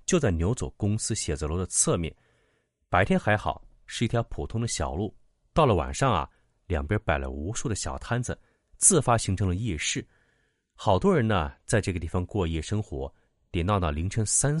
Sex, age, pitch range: male, 30-49, 85-115 Hz